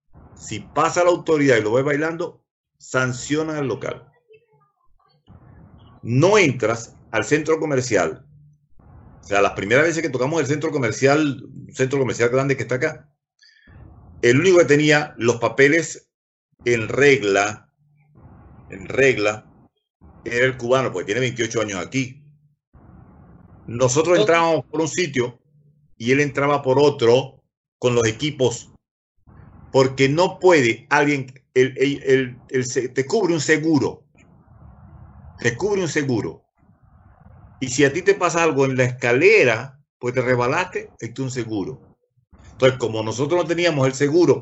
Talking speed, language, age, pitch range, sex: 140 wpm, Spanish, 50-69, 125-155 Hz, male